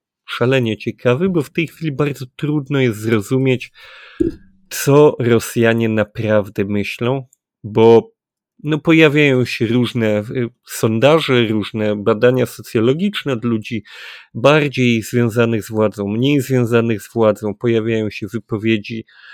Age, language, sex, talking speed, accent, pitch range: 30-49, Polish, male, 110 wpm, native, 110-125 Hz